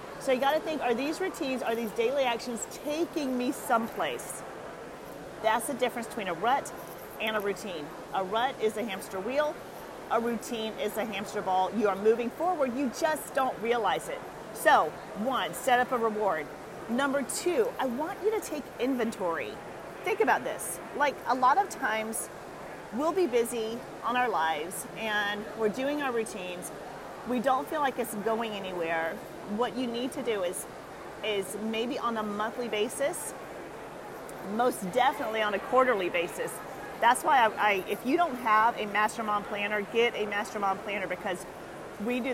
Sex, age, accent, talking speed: female, 40-59, American, 170 wpm